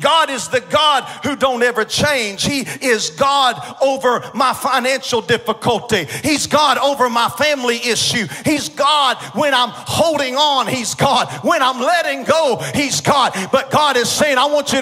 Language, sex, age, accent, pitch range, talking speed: English, male, 40-59, American, 250-310 Hz, 170 wpm